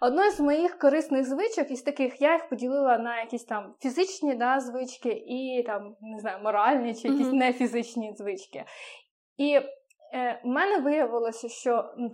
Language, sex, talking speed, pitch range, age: Ukrainian, female, 160 wpm, 235-280 Hz, 20-39